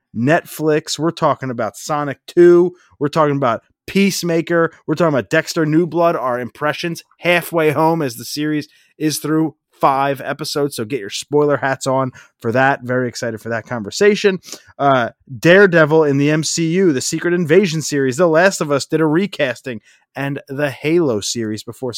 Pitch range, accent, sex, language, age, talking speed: 125-165 Hz, American, male, English, 30-49, 165 wpm